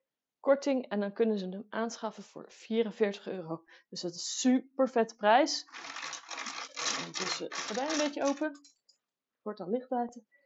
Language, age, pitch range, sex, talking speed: Dutch, 30-49, 195-290 Hz, female, 155 wpm